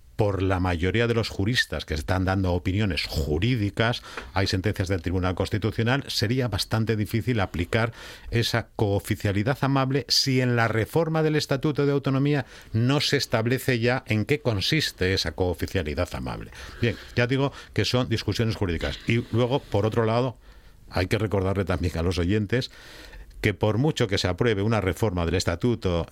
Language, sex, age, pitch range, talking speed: Spanish, male, 50-69, 90-120 Hz, 160 wpm